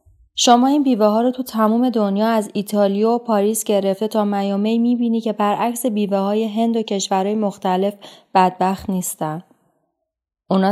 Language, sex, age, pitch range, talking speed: Persian, female, 30-49, 185-225 Hz, 150 wpm